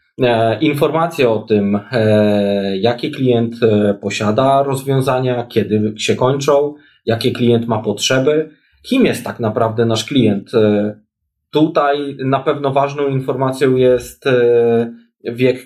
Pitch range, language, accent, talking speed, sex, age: 120-140 Hz, Polish, native, 105 wpm, male, 20-39